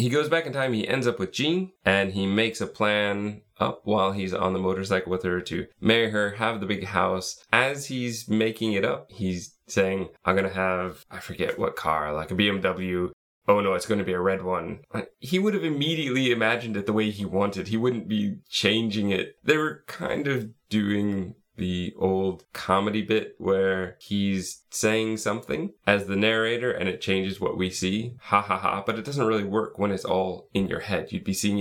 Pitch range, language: 95-115 Hz, English